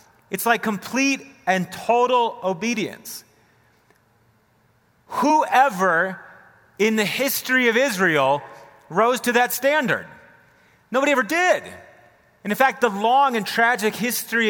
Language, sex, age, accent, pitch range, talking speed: English, male, 30-49, American, 200-255 Hz, 110 wpm